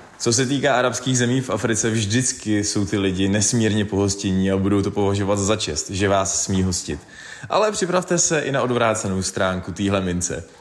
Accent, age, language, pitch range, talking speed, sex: native, 20-39, Czech, 100-125 Hz, 180 wpm, male